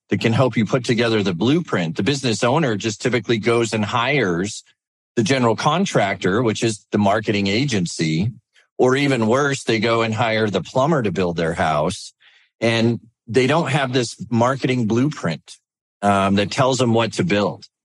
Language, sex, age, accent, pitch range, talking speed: English, male, 40-59, American, 100-120 Hz, 170 wpm